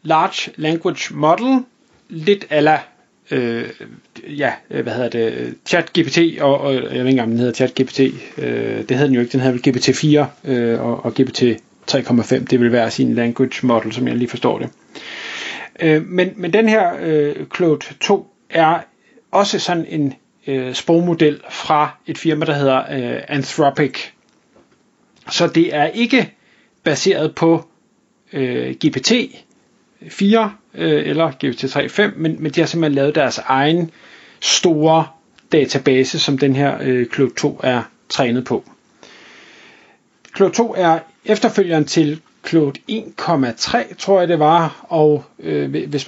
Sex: male